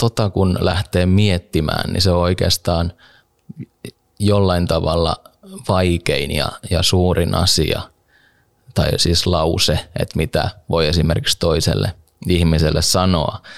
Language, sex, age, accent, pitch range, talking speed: Finnish, male, 20-39, native, 85-95 Hz, 105 wpm